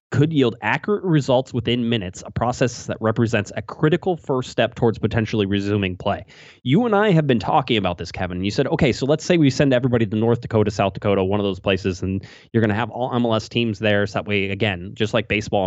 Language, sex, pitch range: English, male, 100-135 Hz